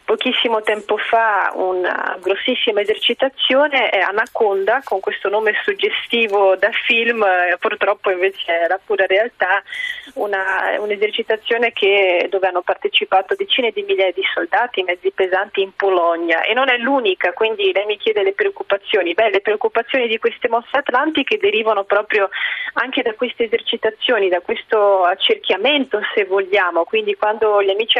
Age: 30-49